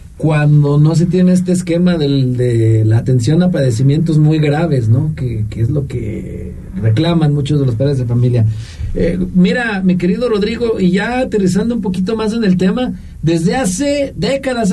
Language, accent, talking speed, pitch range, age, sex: Spanish, Mexican, 180 wpm, 135-185 Hz, 50-69, male